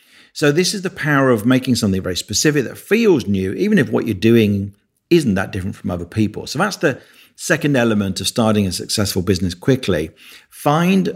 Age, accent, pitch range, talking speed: 50-69, British, 95-125 Hz, 195 wpm